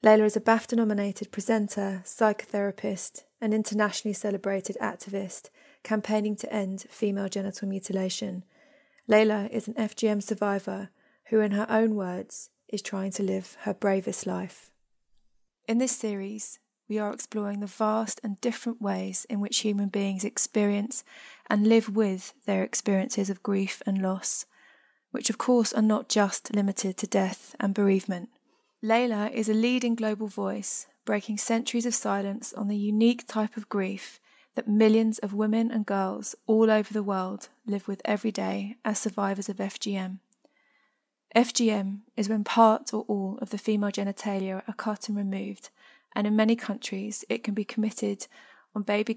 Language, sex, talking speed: English, female, 155 wpm